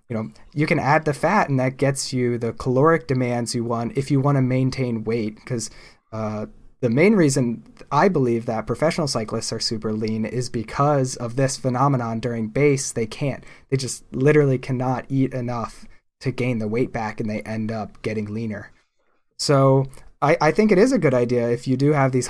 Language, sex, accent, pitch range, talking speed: English, male, American, 115-140 Hz, 200 wpm